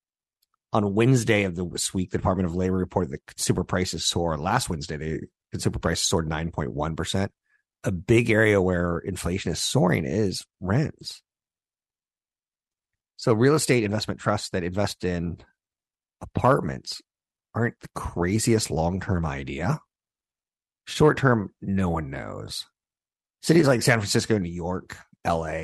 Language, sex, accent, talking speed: English, male, American, 130 wpm